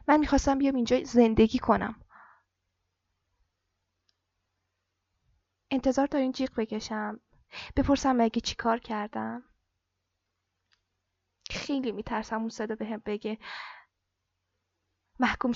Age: 10-29